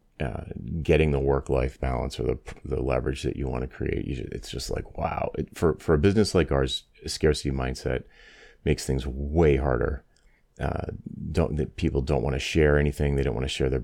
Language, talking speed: English, 195 wpm